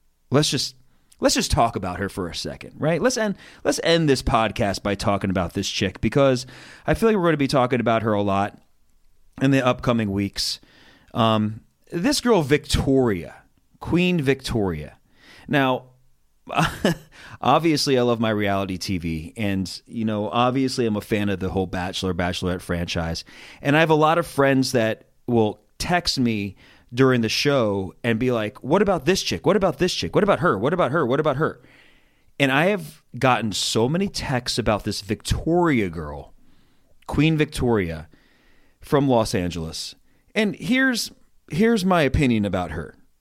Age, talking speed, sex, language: 30-49, 170 wpm, male, English